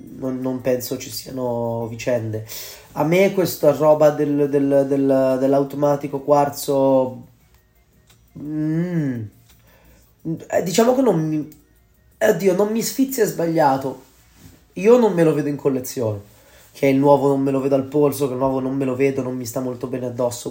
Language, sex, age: Italian, male, 20-39